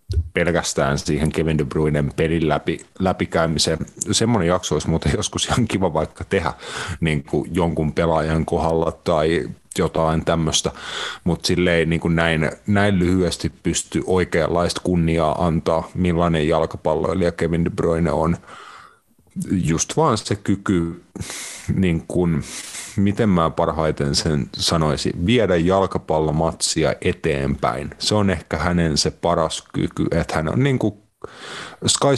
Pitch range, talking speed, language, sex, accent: 80-95 Hz, 125 wpm, Finnish, male, native